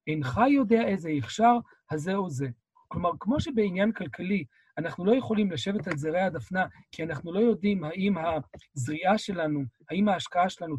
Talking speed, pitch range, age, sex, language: 155 wpm, 145-215 Hz, 40-59, male, Hebrew